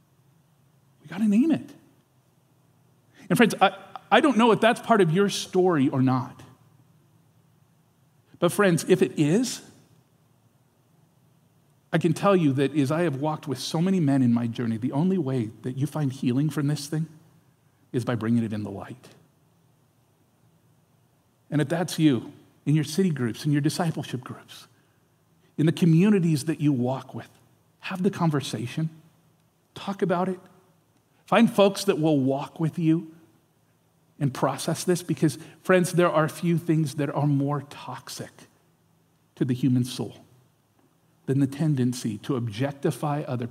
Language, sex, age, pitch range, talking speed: English, male, 50-69, 130-160 Hz, 155 wpm